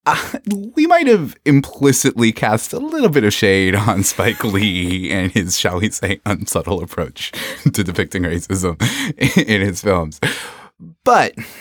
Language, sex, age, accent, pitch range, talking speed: English, male, 30-49, American, 80-110 Hz, 145 wpm